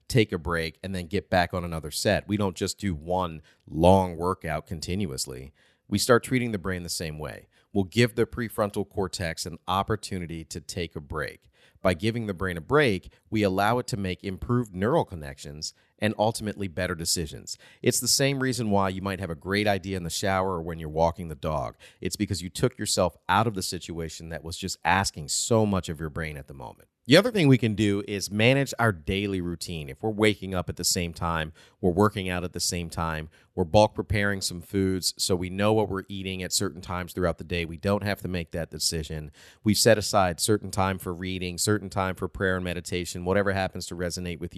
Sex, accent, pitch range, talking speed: male, American, 85-105 Hz, 220 wpm